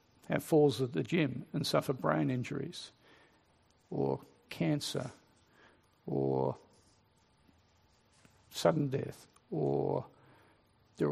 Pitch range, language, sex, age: 110-155 Hz, English, male, 50-69